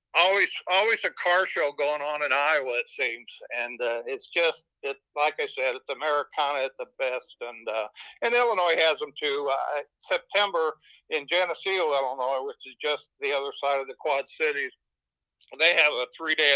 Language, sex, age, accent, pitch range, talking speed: English, male, 60-79, American, 140-205 Hz, 180 wpm